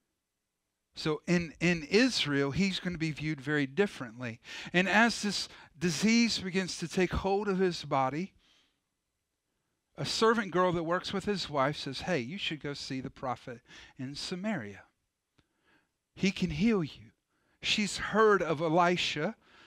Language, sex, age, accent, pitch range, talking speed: English, male, 40-59, American, 160-195 Hz, 145 wpm